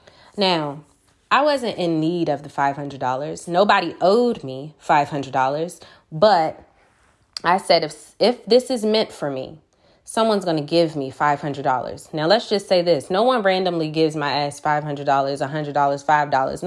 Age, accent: 20-39, American